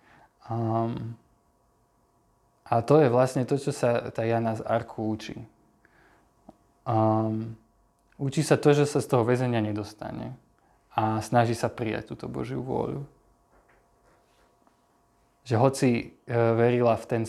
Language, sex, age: Slovak, male, 20-39